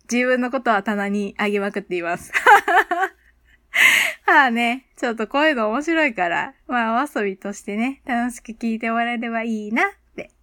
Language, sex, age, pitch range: Japanese, female, 20-39, 205-300 Hz